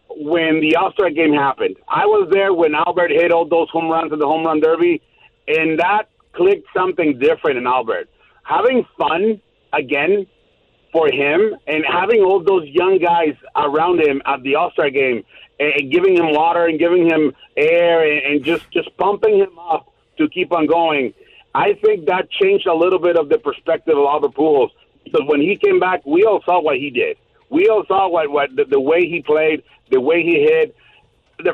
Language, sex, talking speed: English, male, 190 wpm